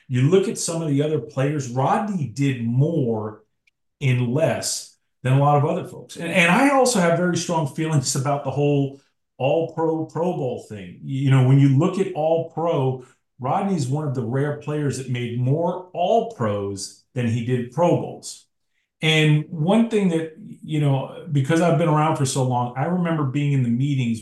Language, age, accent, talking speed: English, 40-59, American, 195 wpm